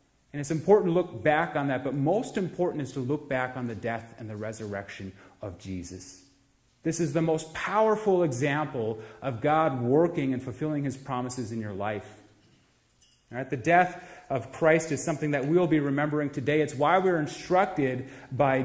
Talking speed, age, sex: 175 wpm, 30-49, male